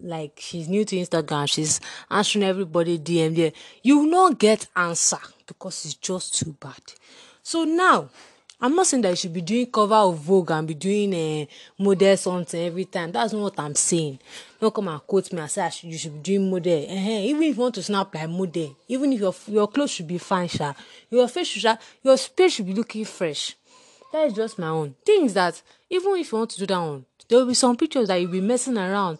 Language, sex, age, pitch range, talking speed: English, female, 30-49, 170-225 Hz, 230 wpm